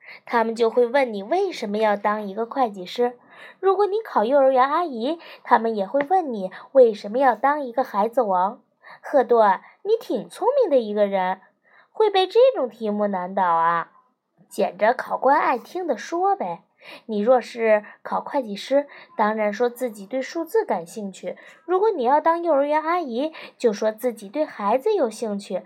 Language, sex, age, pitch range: Chinese, female, 20-39, 210-310 Hz